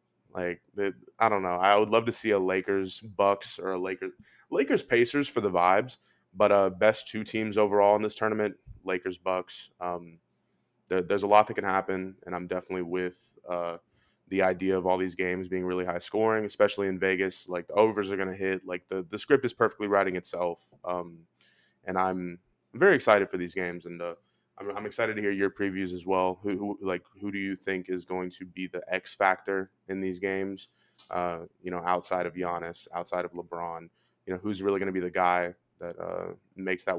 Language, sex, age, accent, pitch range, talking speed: English, male, 20-39, American, 90-100 Hz, 210 wpm